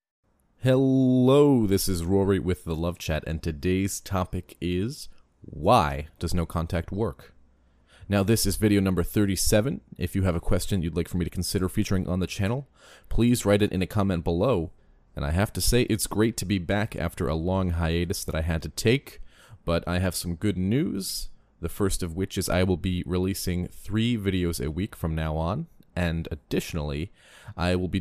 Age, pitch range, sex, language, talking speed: 30-49, 85-100 Hz, male, English, 195 wpm